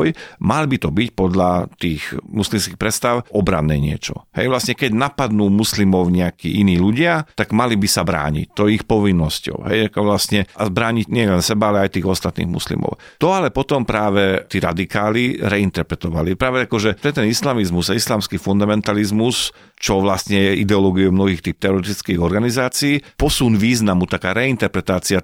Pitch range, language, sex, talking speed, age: 95-115 Hz, Slovak, male, 155 wpm, 40-59